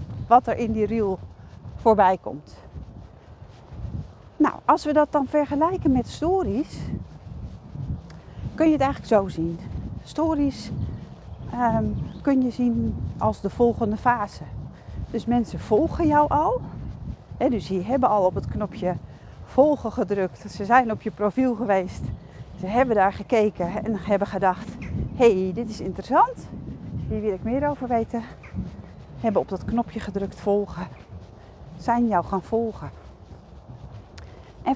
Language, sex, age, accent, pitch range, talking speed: English, female, 40-59, Dutch, 185-260 Hz, 135 wpm